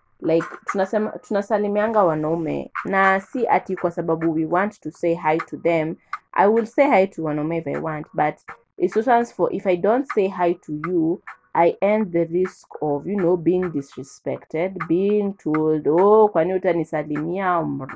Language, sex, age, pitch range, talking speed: English, female, 20-39, 165-205 Hz, 165 wpm